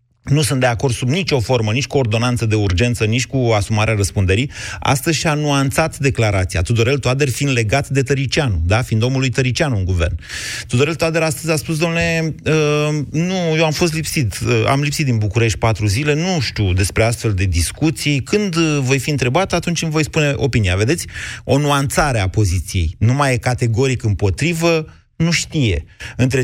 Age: 30-49